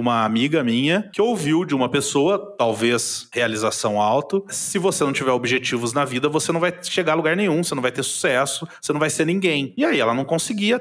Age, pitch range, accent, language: 30-49, 125-190 Hz, Brazilian, Portuguese